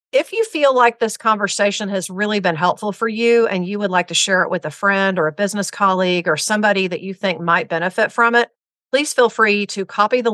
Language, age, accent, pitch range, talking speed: English, 50-69, American, 175-210 Hz, 240 wpm